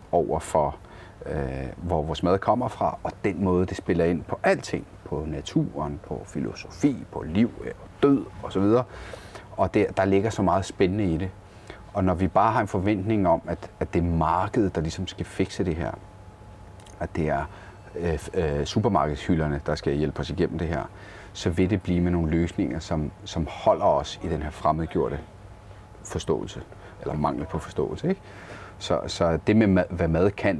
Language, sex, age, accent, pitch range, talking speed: Danish, male, 30-49, native, 80-100 Hz, 185 wpm